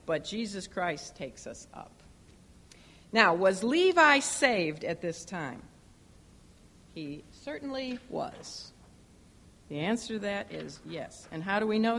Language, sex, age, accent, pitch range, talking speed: English, female, 50-69, American, 175-245 Hz, 135 wpm